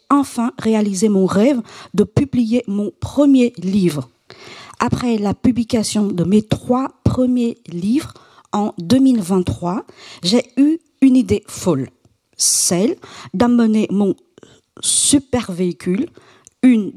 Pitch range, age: 185-245 Hz, 50-69